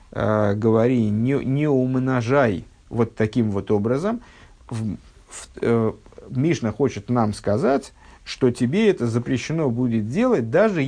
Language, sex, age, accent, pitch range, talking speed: Russian, male, 50-69, native, 110-150 Hz, 125 wpm